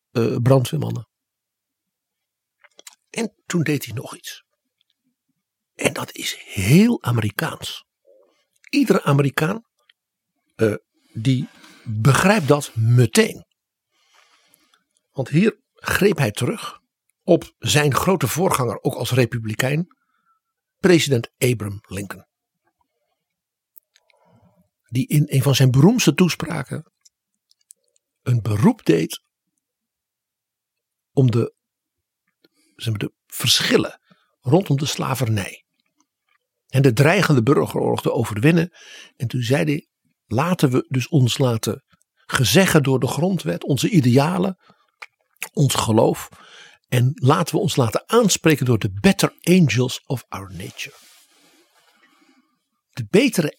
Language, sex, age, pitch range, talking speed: Dutch, male, 60-79, 125-180 Hz, 100 wpm